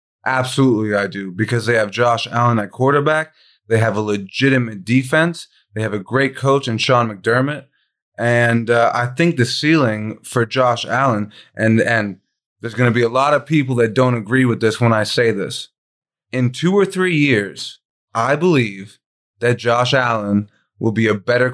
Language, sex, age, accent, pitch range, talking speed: English, male, 30-49, American, 110-140 Hz, 180 wpm